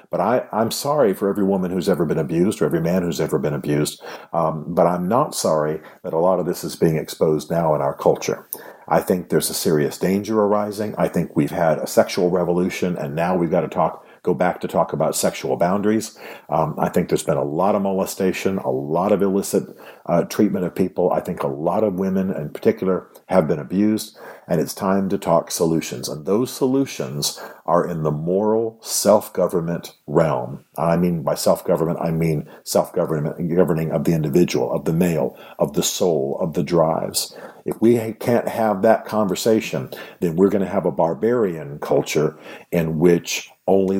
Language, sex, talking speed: English, male, 190 wpm